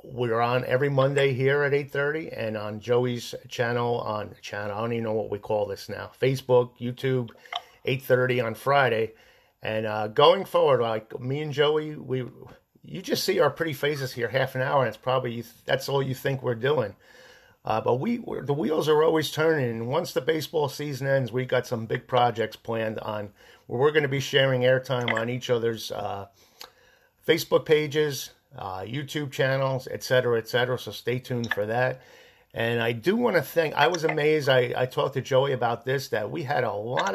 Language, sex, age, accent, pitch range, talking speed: English, male, 50-69, American, 120-140 Hz, 200 wpm